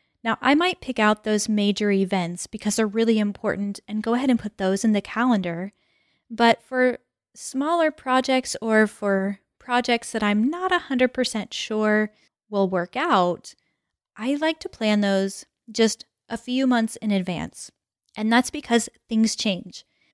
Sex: female